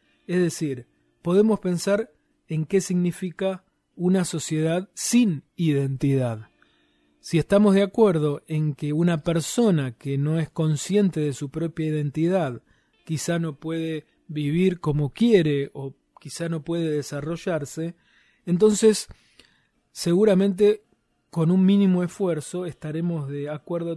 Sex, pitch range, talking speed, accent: male, 150-180 Hz, 120 wpm, Argentinian